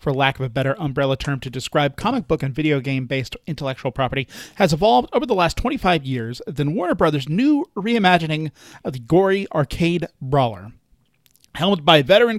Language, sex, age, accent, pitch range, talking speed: English, male, 40-59, American, 135-195 Hz, 180 wpm